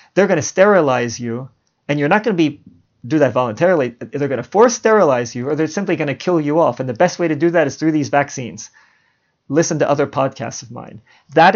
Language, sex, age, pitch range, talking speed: English, male, 40-59, 135-165 Hz, 240 wpm